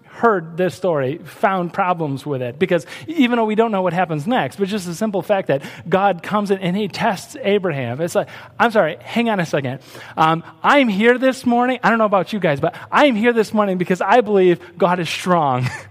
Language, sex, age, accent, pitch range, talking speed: English, male, 30-49, American, 170-230 Hz, 225 wpm